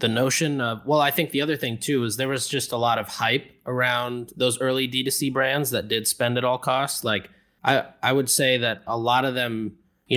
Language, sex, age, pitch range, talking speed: English, male, 20-39, 110-130 Hz, 235 wpm